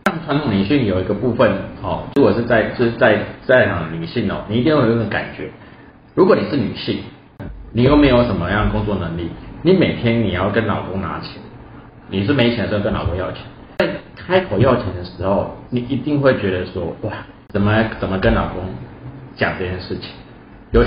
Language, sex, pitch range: Chinese, male, 95-125 Hz